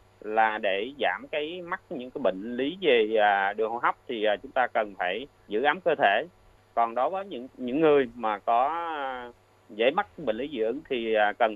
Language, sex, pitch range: Vietnamese, male, 105-140 Hz